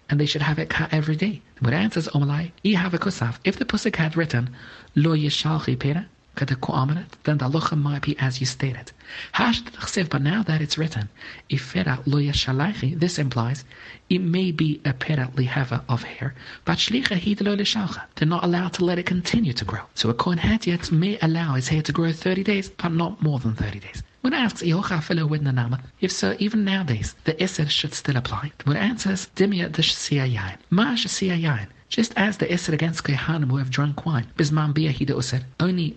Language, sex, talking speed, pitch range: English, male, 190 wpm, 135-175 Hz